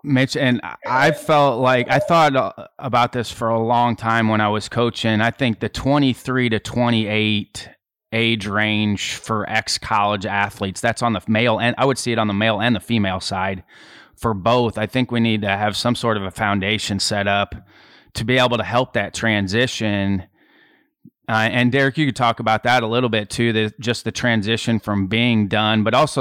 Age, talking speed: 30-49, 195 wpm